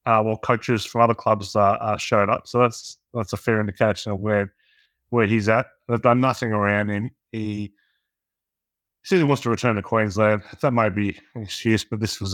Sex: male